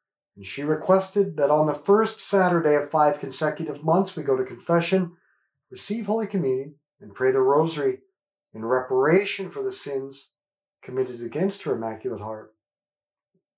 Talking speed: 145 wpm